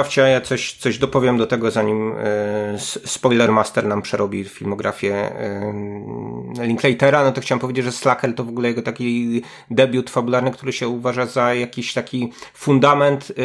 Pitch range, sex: 110-130 Hz, male